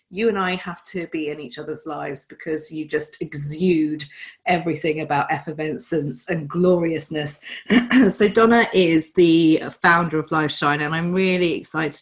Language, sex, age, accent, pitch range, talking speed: English, female, 30-49, British, 150-180 Hz, 150 wpm